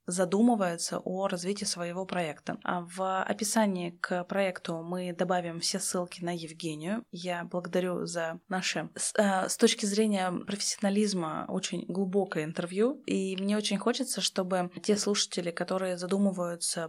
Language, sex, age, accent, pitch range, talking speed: Russian, female, 20-39, native, 175-200 Hz, 130 wpm